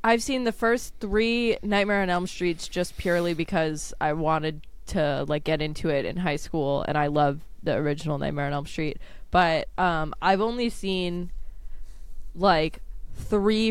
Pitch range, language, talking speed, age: 160-210 Hz, English, 165 wpm, 20-39